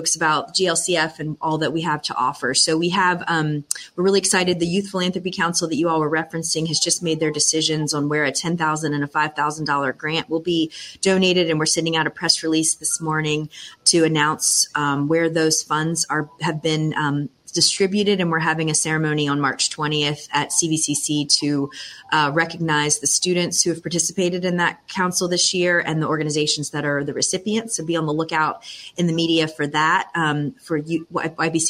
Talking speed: 195 wpm